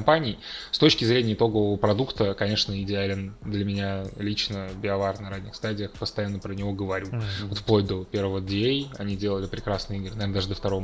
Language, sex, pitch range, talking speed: Russian, male, 100-110 Hz, 170 wpm